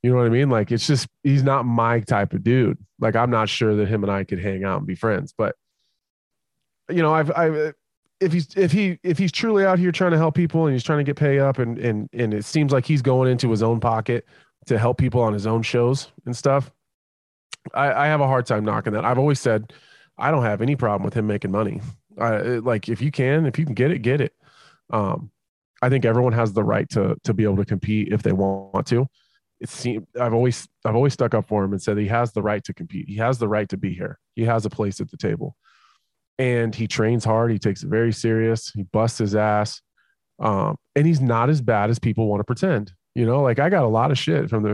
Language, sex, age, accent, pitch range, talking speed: English, male, 20-39, American, 110-140 Hz, 255 wpm